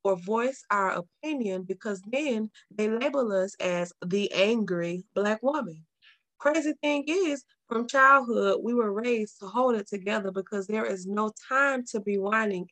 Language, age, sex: English, 20-39, female